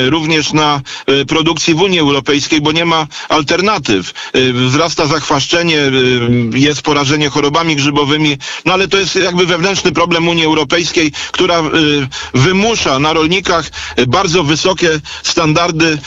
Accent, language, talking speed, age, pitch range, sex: native, Polish, 120 wpm, 40-59, 145-180 Hz, male